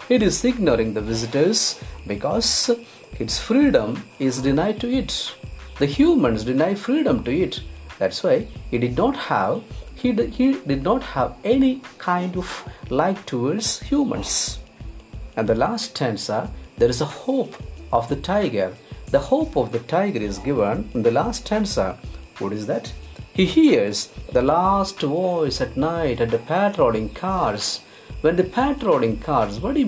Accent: Indian